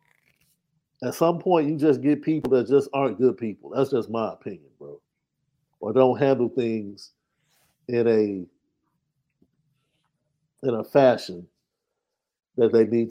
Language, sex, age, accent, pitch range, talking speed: English, male, 50-69, American, 115-150 Hz, 130 wpm